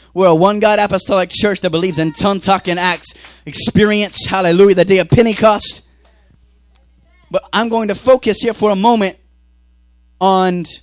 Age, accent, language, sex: 20-39, American, English, male